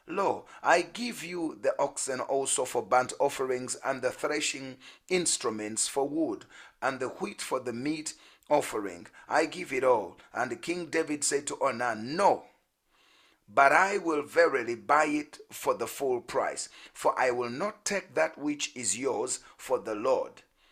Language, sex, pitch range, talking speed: English, male, 135-190 Hz, 160 wpm